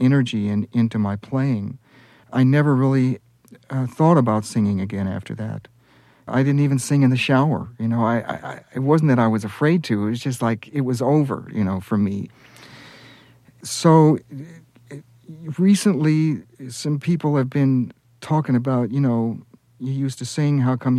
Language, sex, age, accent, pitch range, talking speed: English, male, 60-79, American, 115-135 Hz, 185 wpm